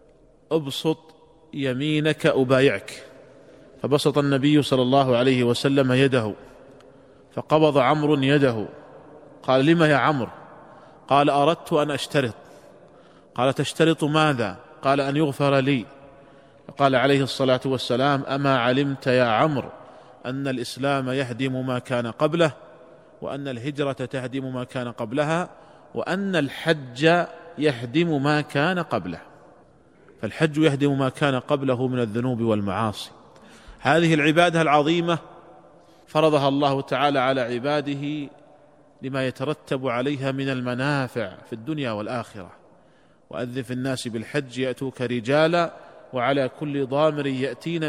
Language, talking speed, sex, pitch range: Arabic, 110 wpm, male, 130-155 Hz